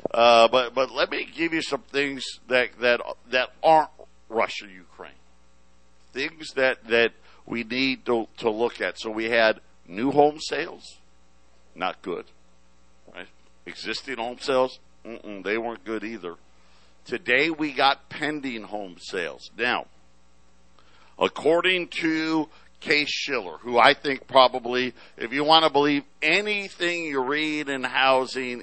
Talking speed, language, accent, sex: 135 wpm, English, American, male